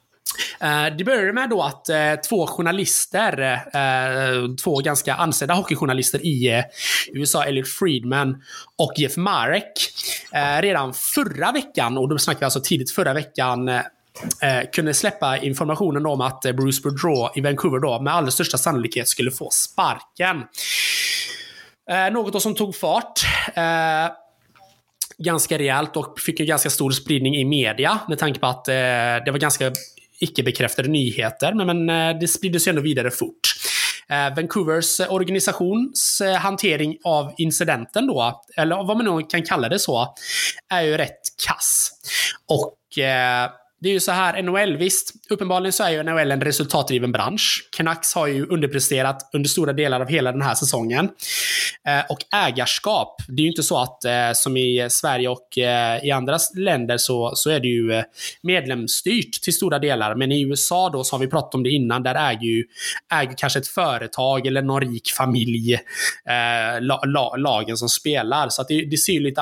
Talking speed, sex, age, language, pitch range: 160 wpm, male, 20-39, Swedish, 130-175 Hz